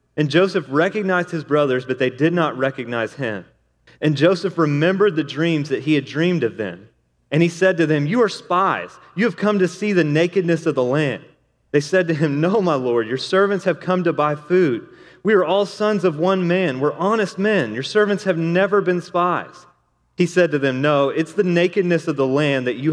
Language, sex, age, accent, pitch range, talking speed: English, male, 30-49, American, 135-180 Hz, 215 wpm